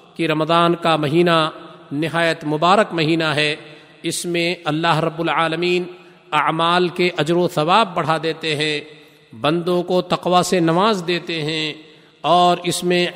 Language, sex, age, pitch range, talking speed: Urdu, male, 50-69, 150-175 Hz, 130 wpm